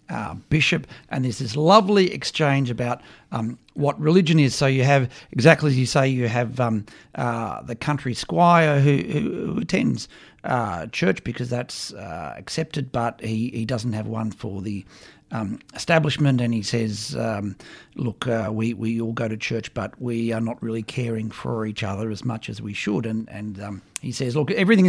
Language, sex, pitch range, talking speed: English, male, 110-140 Hz, 190 wpm